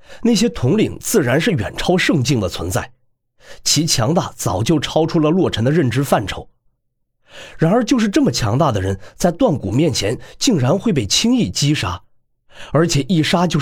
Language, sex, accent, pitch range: Chinese, male, native, 120-165 Hz